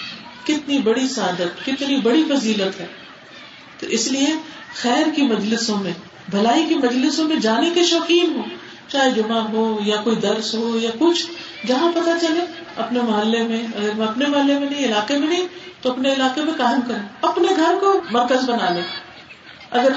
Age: 50-69